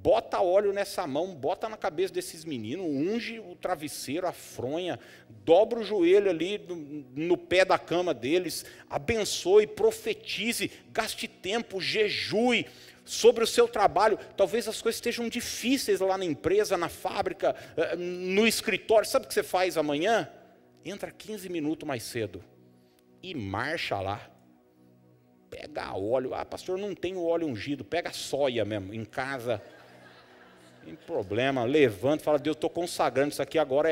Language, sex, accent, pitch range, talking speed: Portuguese, male, Brazilian, 140-225 Hz, 145 wpm